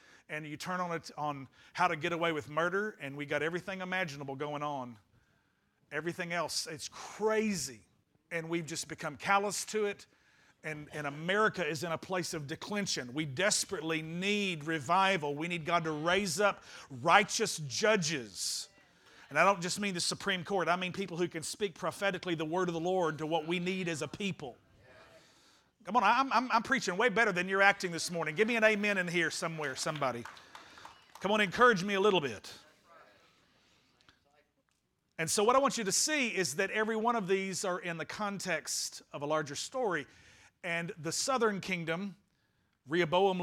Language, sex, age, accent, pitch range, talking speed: English, male, 50-69, American, 155-200 Hz, 185 wpm